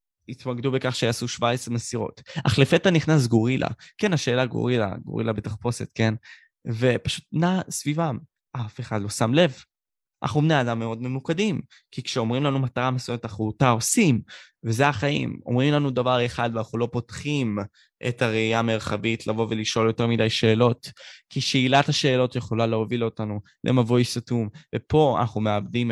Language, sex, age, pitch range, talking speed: Hebrew, male, 20-39, 115-140 Hz, 150 wpm